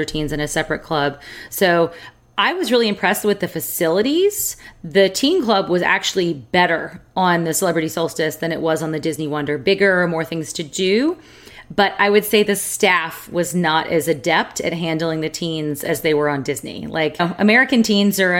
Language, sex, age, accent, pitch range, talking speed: English, female, 30-49, American, 155-200 Hz, 190 wpm